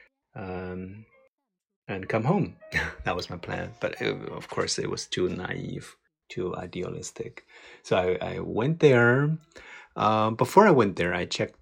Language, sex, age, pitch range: Chinese, male, 30-49, 90-125 Hz